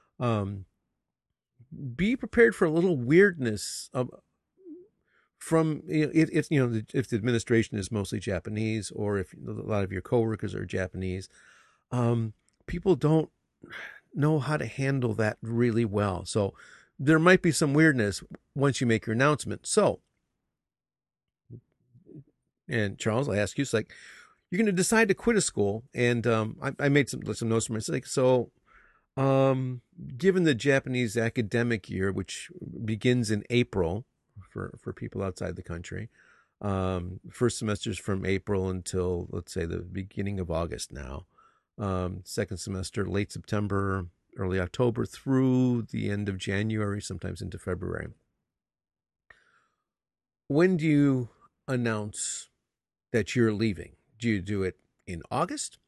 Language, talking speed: English, 145 wpm